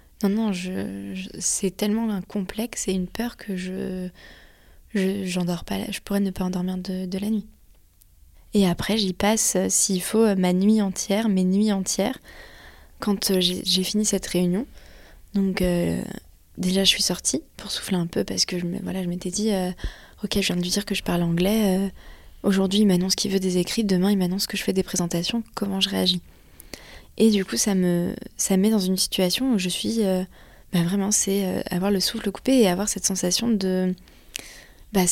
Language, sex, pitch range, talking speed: French, female, 185-205 Hz, 200 wpm